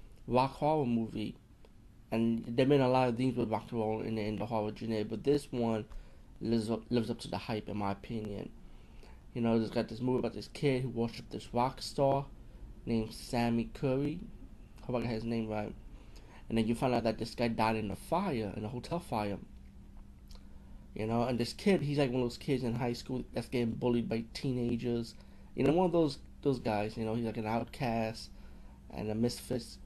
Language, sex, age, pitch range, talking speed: English, male, 20-39, 110-130 Hz, 215 wpm